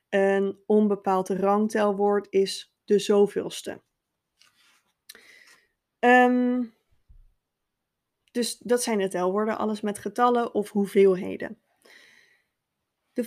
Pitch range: 205-245 Hz